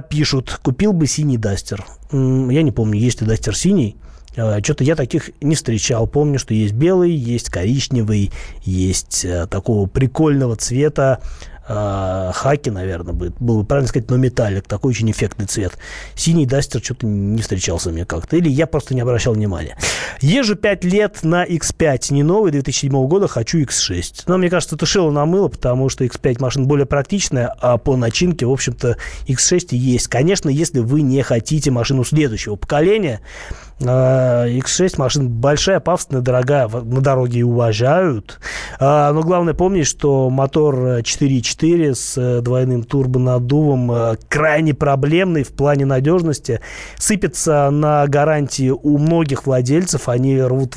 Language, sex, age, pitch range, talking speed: Russian, male, 20-39, 115-150 Hz, 140 wpm